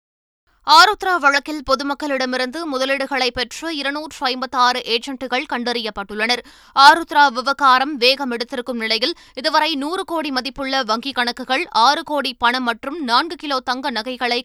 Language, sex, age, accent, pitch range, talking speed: Tamil, female, 20-39, native, 240-290 Hz, 115 wpm